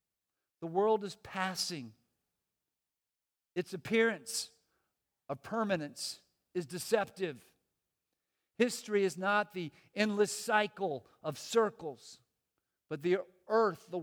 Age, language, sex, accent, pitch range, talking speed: 50-69, English, male, American, 175-215 Hz, 95 wpm